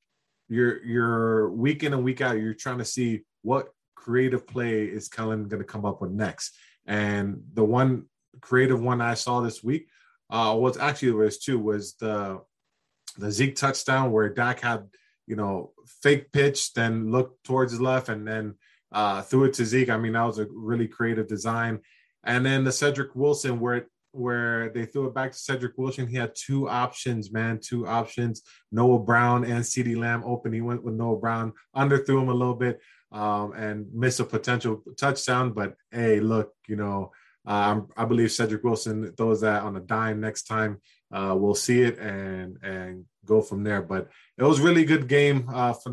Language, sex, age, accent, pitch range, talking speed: English, male, 20-39, American, 110-125 Hz, 190 wpm